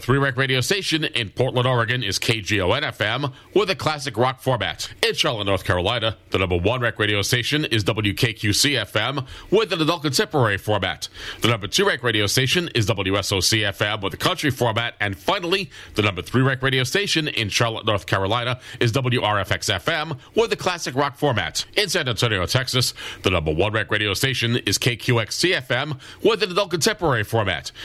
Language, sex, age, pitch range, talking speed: English, male, 40-59, 105-140 Hz, 160 wpm